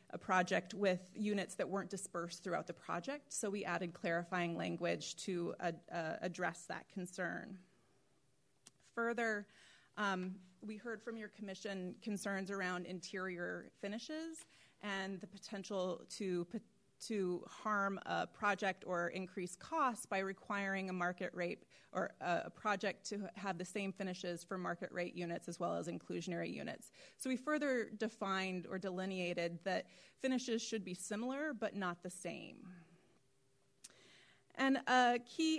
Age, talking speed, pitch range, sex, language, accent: 30-49, 140 wpm, 180-215 Hz, female, English, American